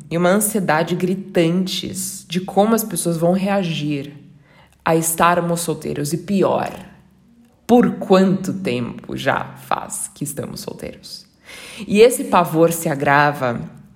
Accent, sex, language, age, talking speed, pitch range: Brazilian, female, Portuguese, 20-39, 120 wpm, 175-230 Hz